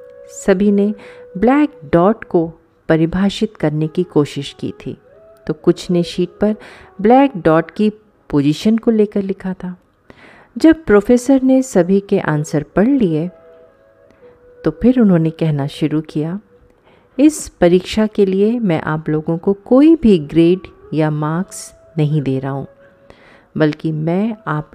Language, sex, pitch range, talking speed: Hindi, female, 160-245 Hz, 140 wpm